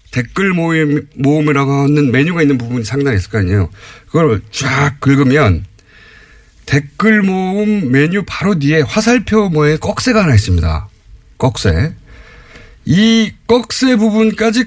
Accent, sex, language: native, male, Korean